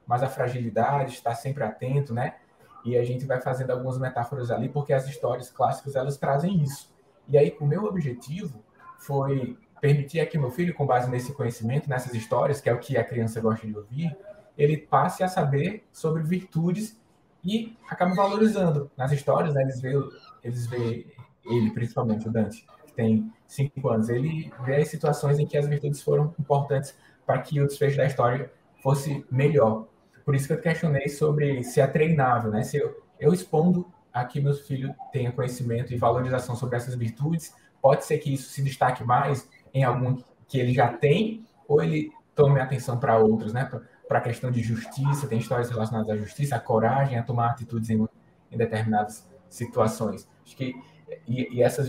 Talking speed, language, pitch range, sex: 185 wpm, Portuguese, 120-150 Hz, male